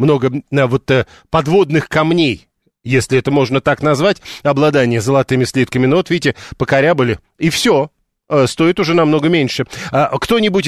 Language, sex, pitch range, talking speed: Russian, male, 130-165 Hz, 140 wpm